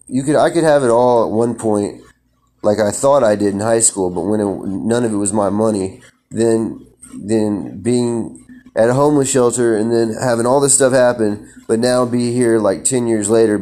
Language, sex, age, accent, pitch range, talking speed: English, male, 30-49, American, 100-120 Hz, 215 wpm